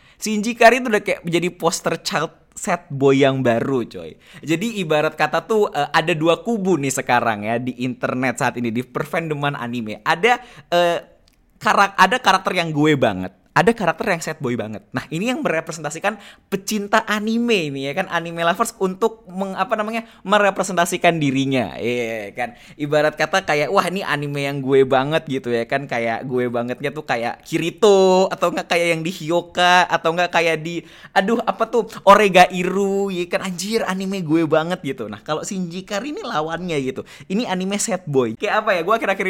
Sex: male